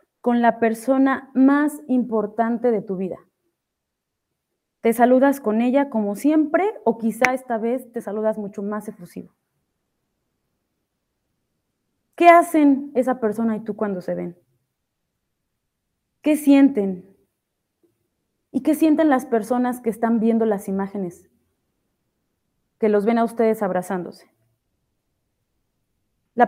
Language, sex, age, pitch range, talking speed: Spanish, female, 30-49, 205-275 Hz, 115 wpm